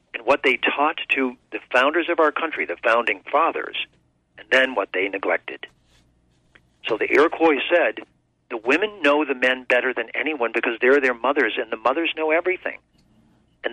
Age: 50-69